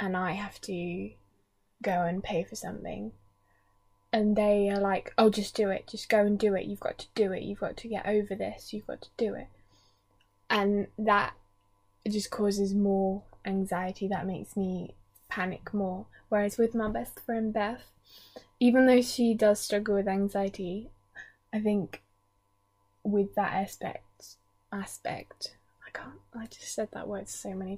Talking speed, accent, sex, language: 165 wpm, British, female, English